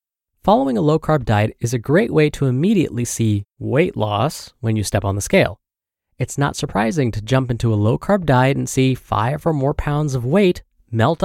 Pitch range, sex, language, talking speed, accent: 115-160 Hz, male, English, 195 wpm, American